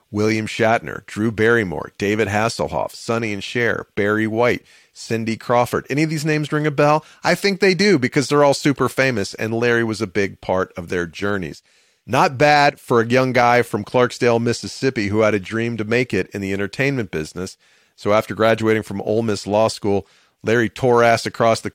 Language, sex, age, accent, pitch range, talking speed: English, male, 40-59, American, 100-130 Hz, 195 wpm